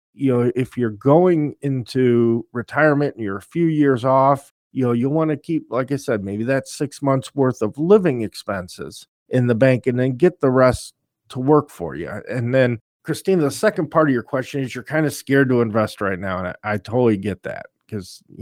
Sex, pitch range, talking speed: male, 105-140 Hz, 220 wpm